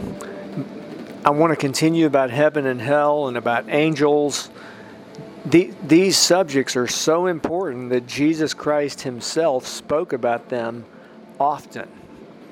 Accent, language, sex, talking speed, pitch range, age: American, English, male, 120 wpm, 130-155 Hz, 40-59